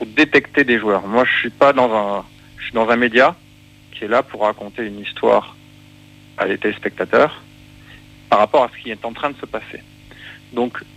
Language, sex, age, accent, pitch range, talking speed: French, male, 40-59, French, 105-130 Hz, 200 wpm